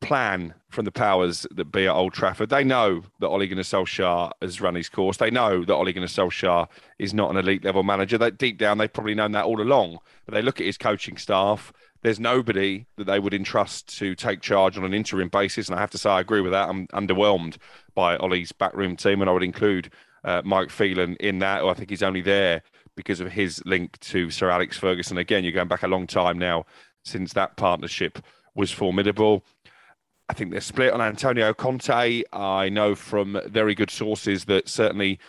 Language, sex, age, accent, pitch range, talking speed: English, male, 30-49, British, 95-110 Hz, 215 wpm